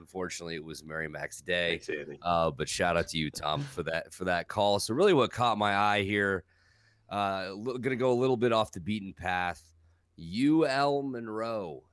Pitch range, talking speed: 100-130 Hz, 195 wpm